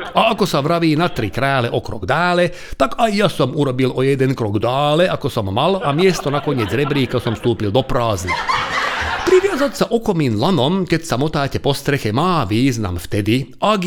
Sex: male